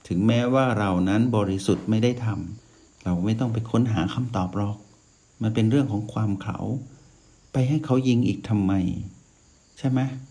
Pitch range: 95-115 Hz